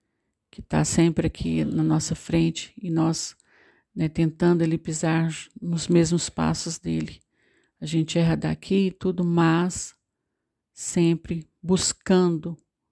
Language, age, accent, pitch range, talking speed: Portuguese, 50-69, Brazilian, 160-180 Hz, 120 wpm